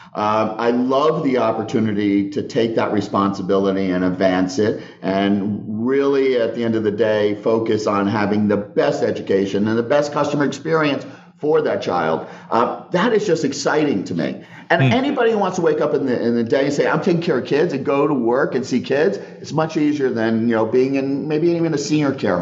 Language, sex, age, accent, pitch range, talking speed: English, male, 40-59, American, 100-135 Hz, 215 wpm